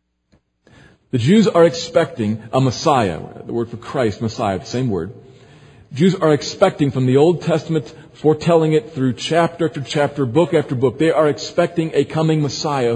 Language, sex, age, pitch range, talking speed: English, male, 40-59, 115-170 Hz, 165 wpm